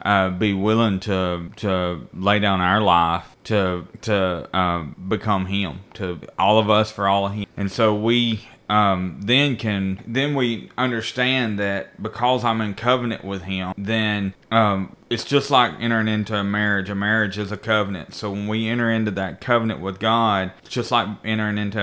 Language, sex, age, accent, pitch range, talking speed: English, male, 30-49, American, 100-115 Hz, 180 wpm